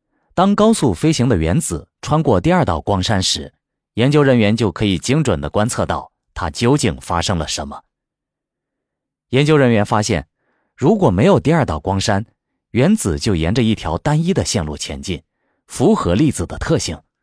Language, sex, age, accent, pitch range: Chinese, male, 30-49, native, 85-140 Hz